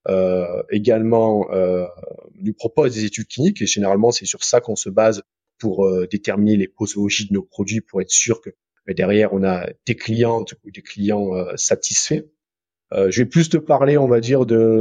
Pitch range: 105-140 Hz